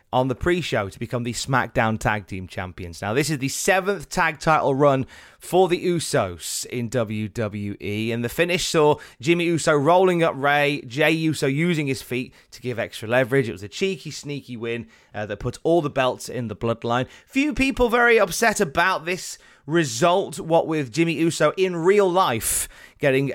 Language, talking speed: English, 180 wpm